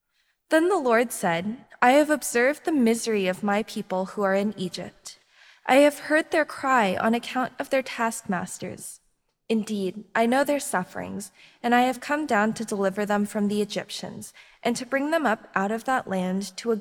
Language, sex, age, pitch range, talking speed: English, female, 20-39, 200-255 Hz, 190 wpm